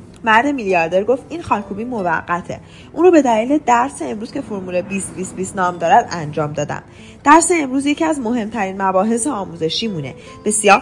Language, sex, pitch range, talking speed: Persian, female, 185-265 Hz, 155 wpm